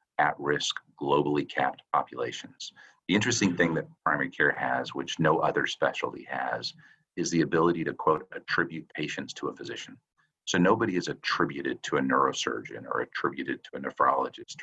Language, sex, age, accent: English, male, 50-69, American